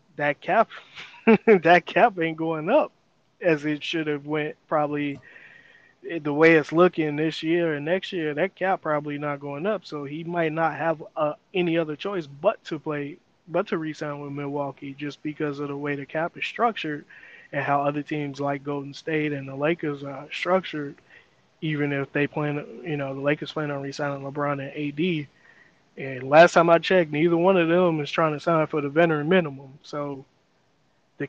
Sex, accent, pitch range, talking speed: male, American, 145-165 Hz, 190 wpm